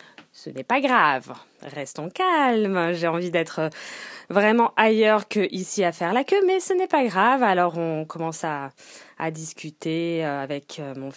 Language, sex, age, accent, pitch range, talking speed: French, female, 20-39, French, 170-265 Hz, 155 wpm